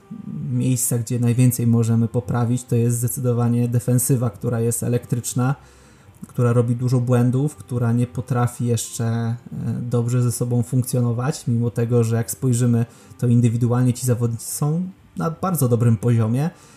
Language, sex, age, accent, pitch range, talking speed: Polish, male, 20-39, native, 120-130 Hz, 135 wpm